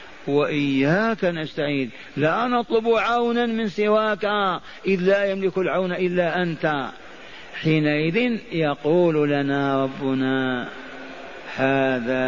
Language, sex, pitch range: Arabic, male, 150-180 Hz